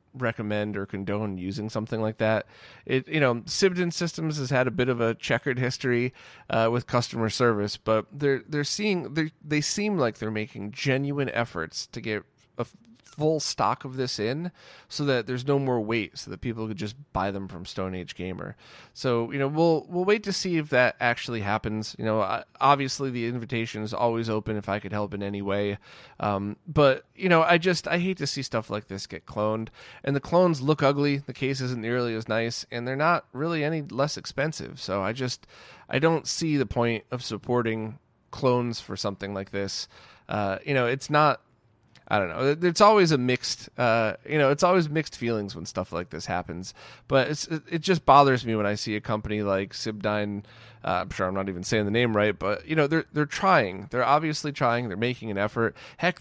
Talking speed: 210 wpm